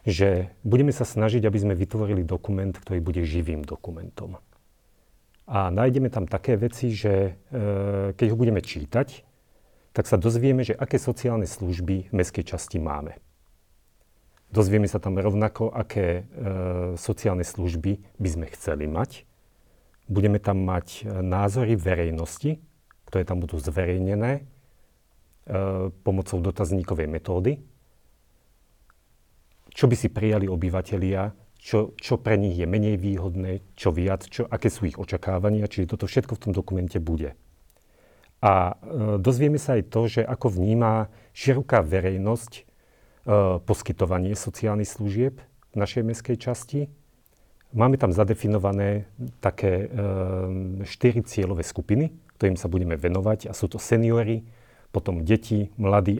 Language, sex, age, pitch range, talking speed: Slovak, male, 40-59, 95-115 Hz, 130 wpm